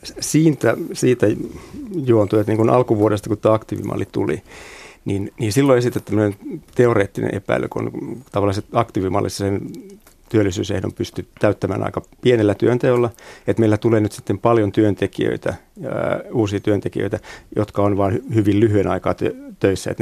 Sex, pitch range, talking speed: male, 100-125 Hz, 130 wpm